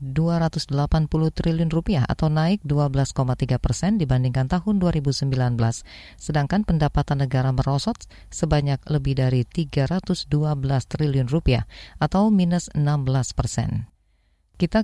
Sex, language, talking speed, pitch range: female, Indonesian, 100 wpm, 135-170 Hz